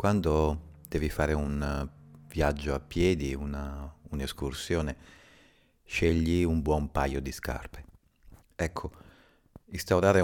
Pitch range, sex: 70-85 Hz, male